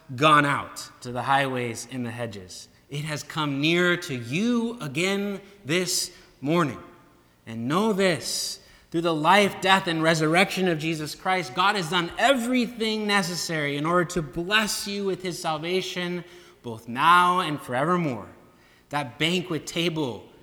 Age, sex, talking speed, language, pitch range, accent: 20-39, male, 145 wpm, English, 130-175 Hz, American